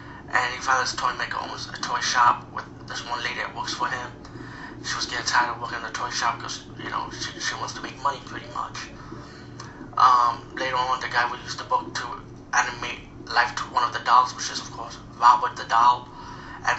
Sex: male